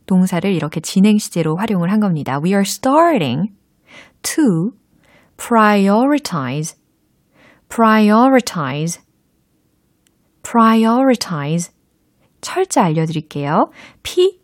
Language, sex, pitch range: Korean, female, 165-245 Hz